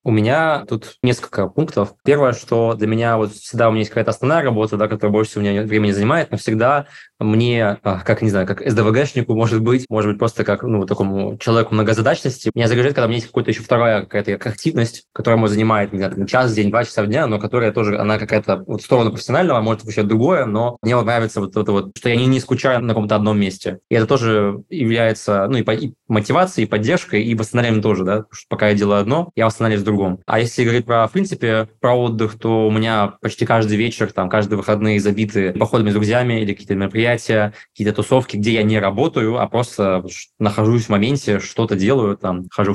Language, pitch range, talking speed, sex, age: Russian, 105-120 Hz, 215 wpm, male, 20-39